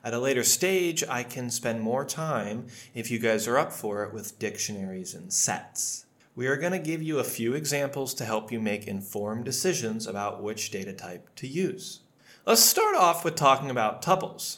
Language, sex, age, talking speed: English, male, 30-49, 200 wpm